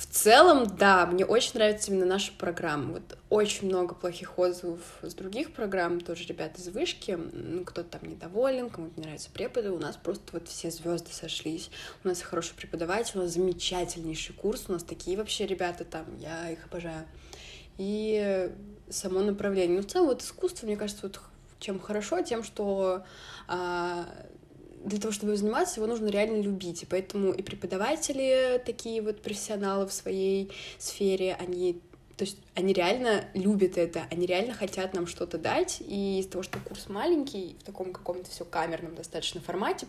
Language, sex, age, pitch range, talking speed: Russian, female, 20-39, 175-210 Hz, 170 wpm